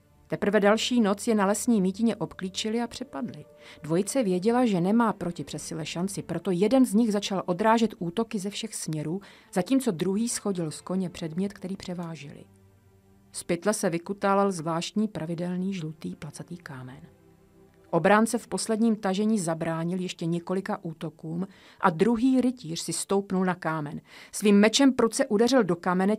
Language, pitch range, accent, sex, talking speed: Czech, 165-220 Hz, native, female, 145 wpm